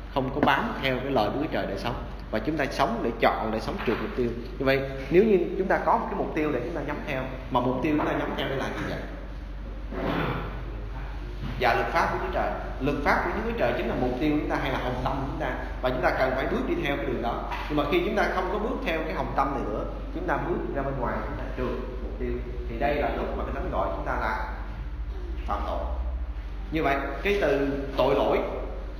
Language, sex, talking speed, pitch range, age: Vietnamese, male, 260 wpm, 100-135 Hz, 20-39